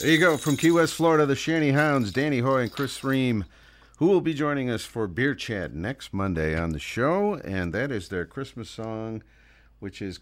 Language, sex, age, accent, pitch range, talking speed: English, male, 50-69, American, 100-145 Hz, 210 wpm